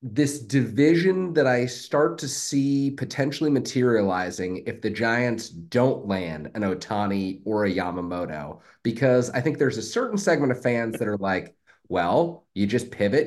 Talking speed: 160 wpm